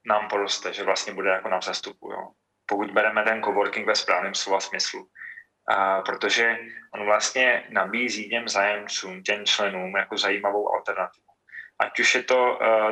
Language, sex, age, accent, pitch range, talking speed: Czech, male, 20-39, native, 100-110 Hz, 160 wpm